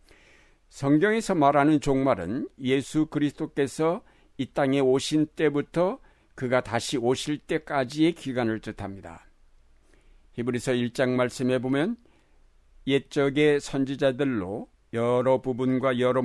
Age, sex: 60-79, male